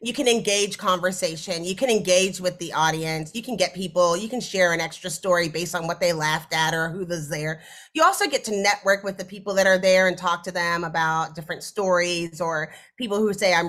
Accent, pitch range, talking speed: American, 175-230 Hz, 230 wpm